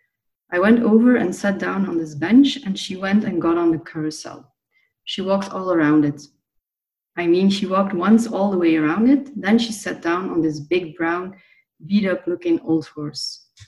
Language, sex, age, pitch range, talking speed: Dutch, female, 30-49, 165-215 Hz, 200 wpm